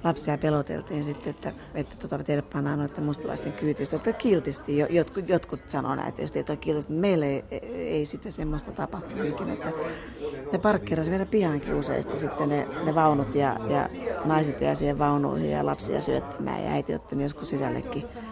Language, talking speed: Finnish, 165 wpm